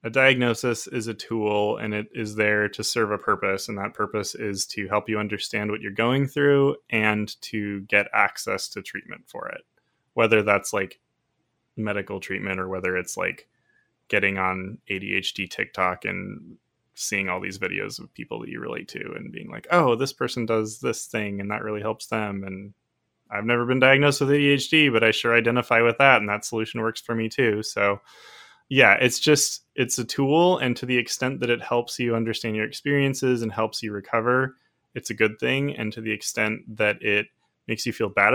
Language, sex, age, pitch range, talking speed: English, male, 20-39, 105-120 Hz, 200 wpm